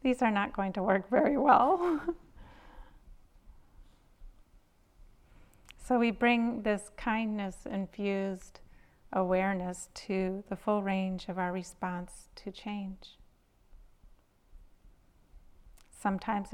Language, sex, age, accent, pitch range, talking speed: English, female, 30-49, American, 175-200 Hz, 85 wpm